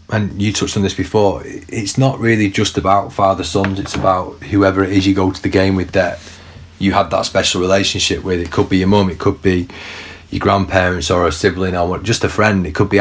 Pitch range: 90-105 Hz